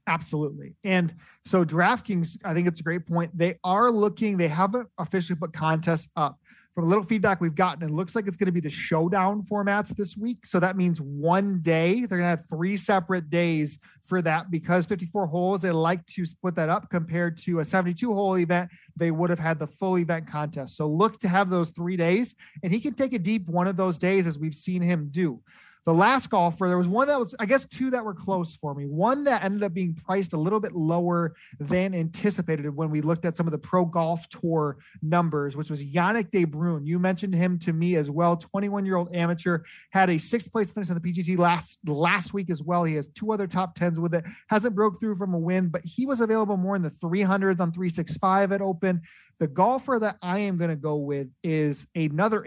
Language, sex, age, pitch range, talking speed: English, male, 30-49, 165-195 Hz, 225 wpm